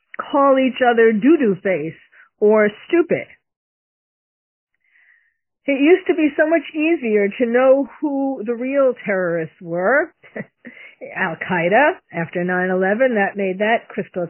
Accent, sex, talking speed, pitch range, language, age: American, female, 120 wpm, 180-255 Hz, English, 50-69